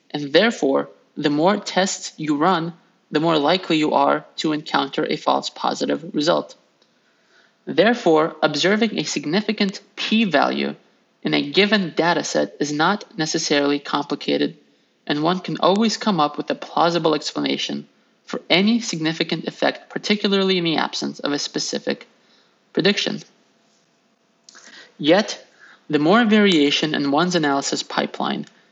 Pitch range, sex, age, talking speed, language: 150-195 Hz, male, 30-49, 130 wpm, English